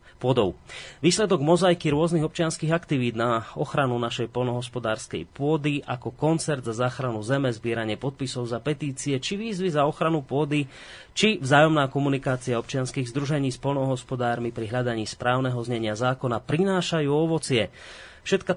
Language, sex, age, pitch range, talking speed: Slovak, male, 30-49, 120-150 Hz, 130 wpm